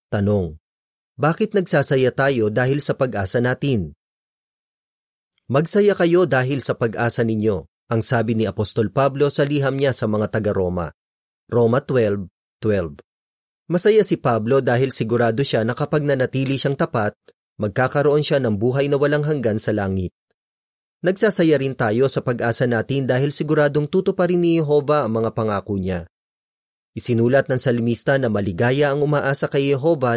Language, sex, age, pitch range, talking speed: Filipino, male, 30-49, 115-145 Hz, 140 wpm